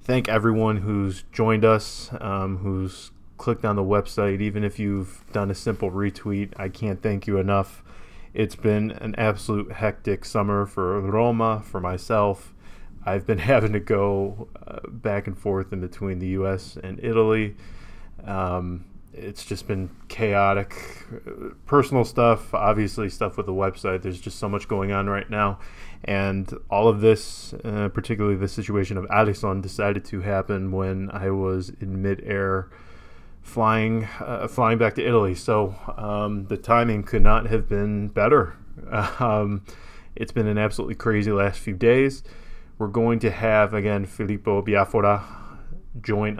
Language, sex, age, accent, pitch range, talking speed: English, male, 20-39, American, 95-110 Hz, 155 wpm